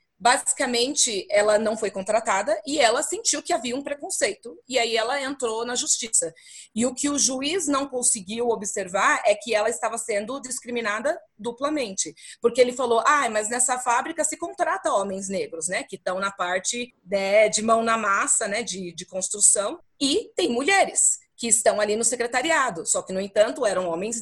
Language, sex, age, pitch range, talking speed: Portuguese, female, 30-49, 200-275 Hz, 180 wpm